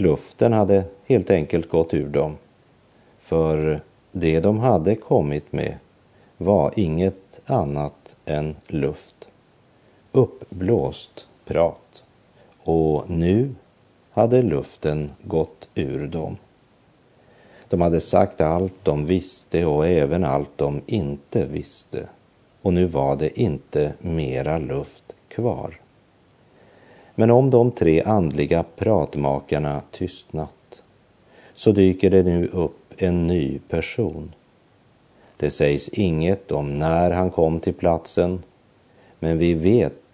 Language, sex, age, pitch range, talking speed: Swedish, male, 50-69, 80-100 Hz, 110 wpm